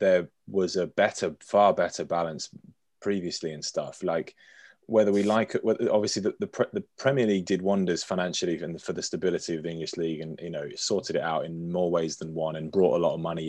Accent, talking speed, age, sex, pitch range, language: British, 220 wpm, 20-39, male, 85-105 Hz, English